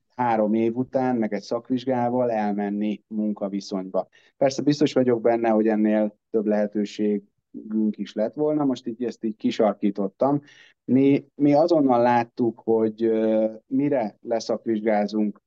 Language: Hungarian